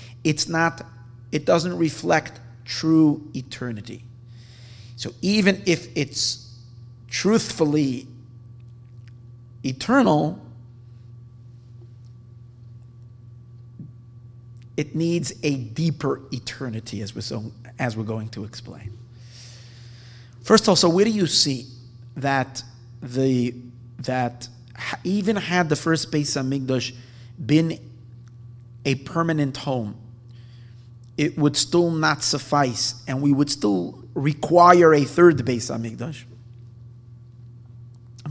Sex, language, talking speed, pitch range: male, English, 100 wpm, 120-140 Hz